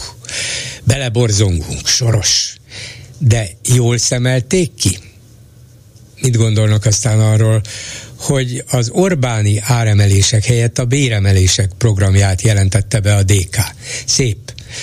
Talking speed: 95 wpm